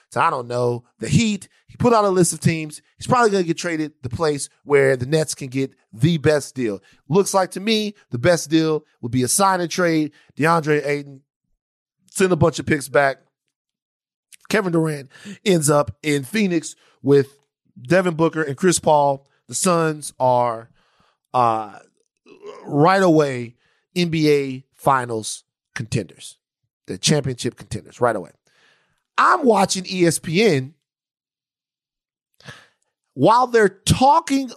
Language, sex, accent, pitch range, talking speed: English, male, American, 140-210 Hz, 140 wpm